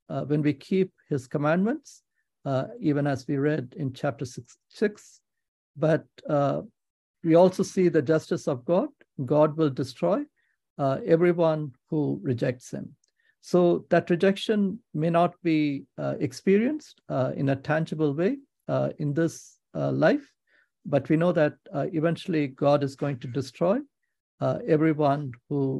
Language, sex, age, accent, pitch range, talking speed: English, male, 60-79, Indian, 140-175 Hz, 145 wpm